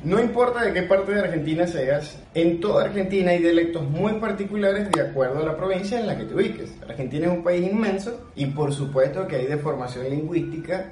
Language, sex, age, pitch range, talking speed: Spanish, male, 20-39, 135-195 Hz, 210 wpm